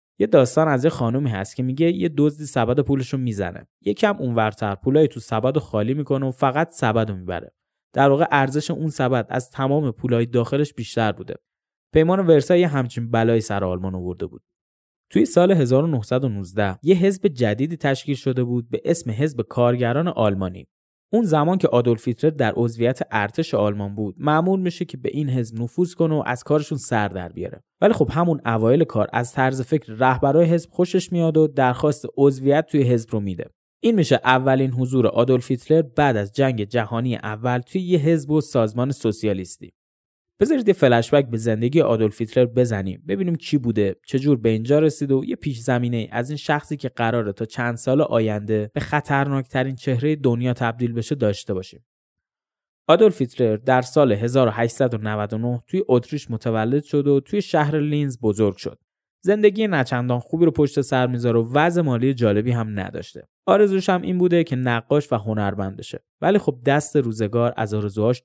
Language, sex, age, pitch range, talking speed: Persian, male, 10-29, 115-150 Hz, 170 wpm